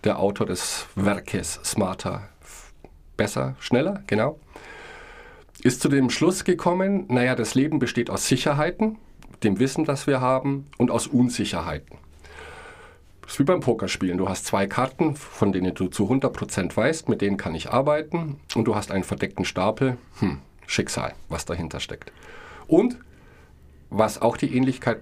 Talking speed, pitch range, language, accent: 150 wpm, 100-145 Hz, German, German